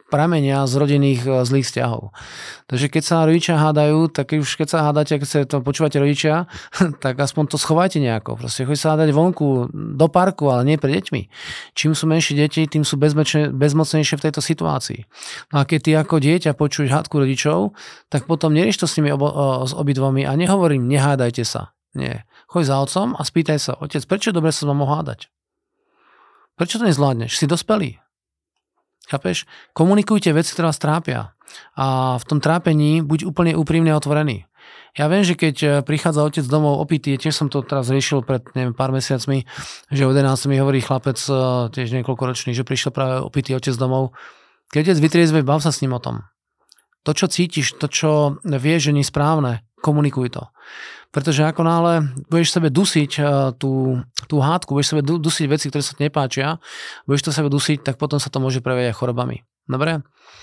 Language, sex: Slovak, male